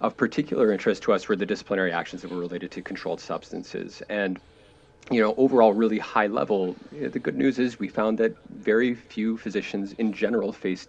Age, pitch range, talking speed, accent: 40-59, 90-115 Hz, 195 wpm, American